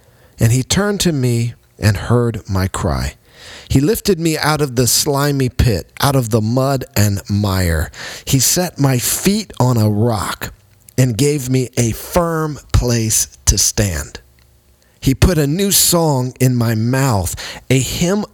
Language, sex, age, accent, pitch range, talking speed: English, male, 50-69, American, 95-130 Hz, 155 wpm